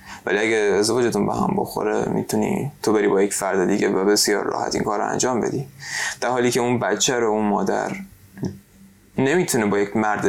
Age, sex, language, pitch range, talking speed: 20-39, male, Persian, 100-120 Hz, 185 wpm